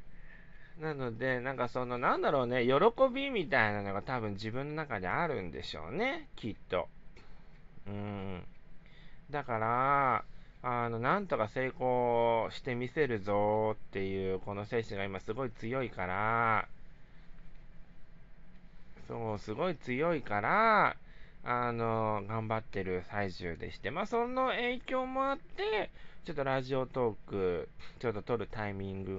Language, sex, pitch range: Japanese, male, 105-160 Hz